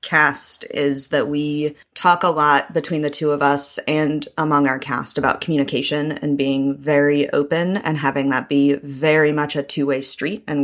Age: 20-39